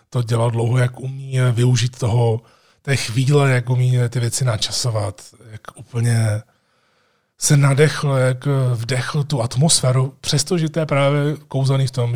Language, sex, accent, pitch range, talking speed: Czech, male, native, 115-130 Hz, 145 wpm